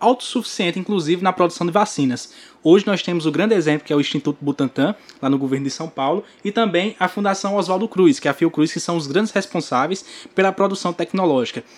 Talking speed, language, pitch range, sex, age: 210 wpm, Portuguese, 150-200 Hz, male, 20-39